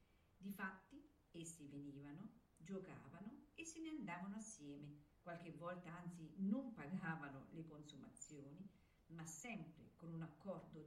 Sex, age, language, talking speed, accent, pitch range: female, 50-69, Italian, 115 wpm, native, 160-225 Hz